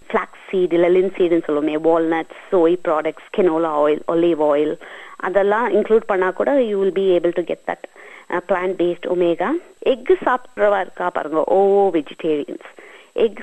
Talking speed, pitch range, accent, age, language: 110 wpm, 180-220 Hz, native, 30-49, Tamil